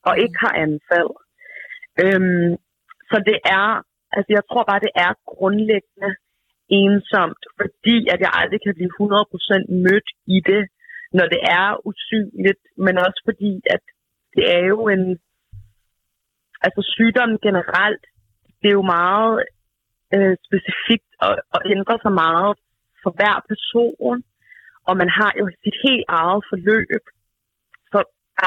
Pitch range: 180-215 Hz